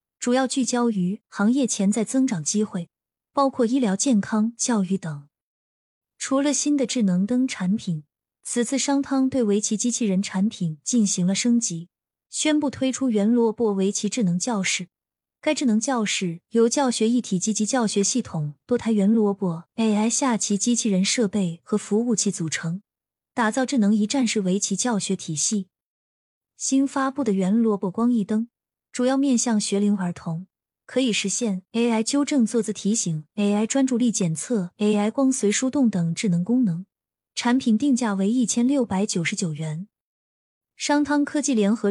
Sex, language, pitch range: female, Chinese, 195-250 Hz